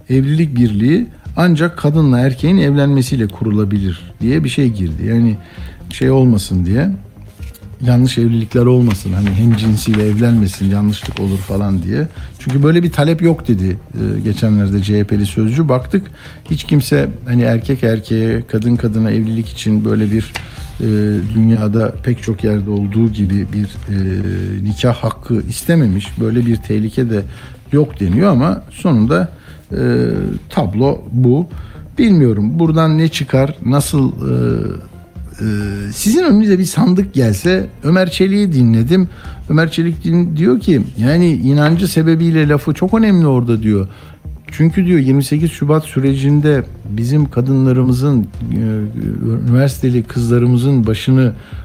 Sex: male